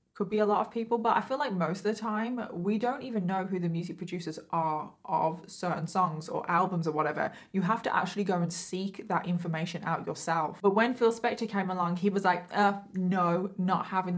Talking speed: 230 wpm